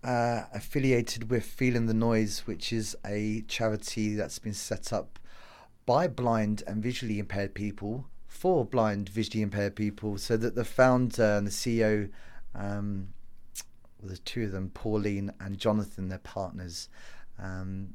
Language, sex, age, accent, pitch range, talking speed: English, male, 30-49, British, 100-115 Hz, 145 wpm